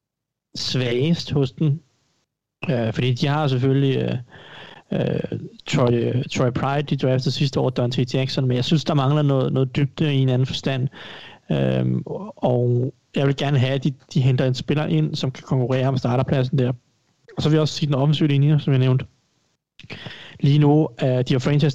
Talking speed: 200 wpm